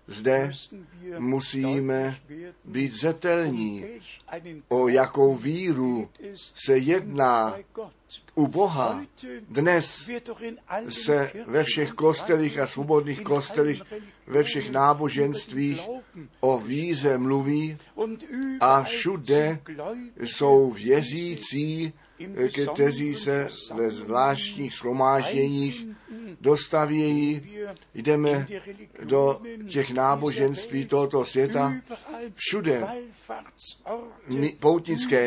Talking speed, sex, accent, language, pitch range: 75 wpm, male, native, Czech, 135-170 Hz